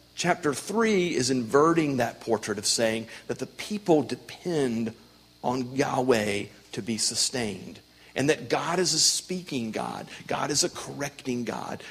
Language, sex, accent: English, male, American